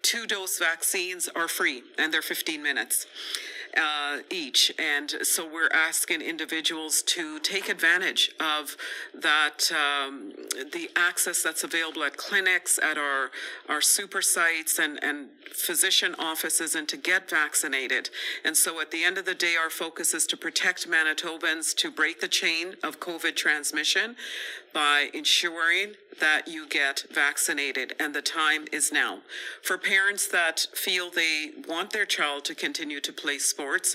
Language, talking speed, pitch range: English, 150 wpm, 155-195 Hz